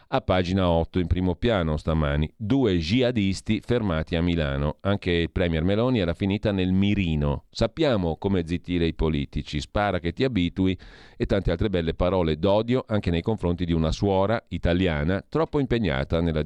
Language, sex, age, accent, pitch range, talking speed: Italian, male, 40-59, native, 80-110 Hz, 165 wpm